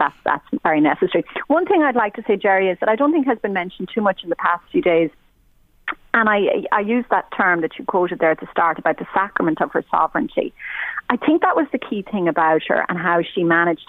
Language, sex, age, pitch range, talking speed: English, female, 40-59, 165-230 Hz, 250 wpm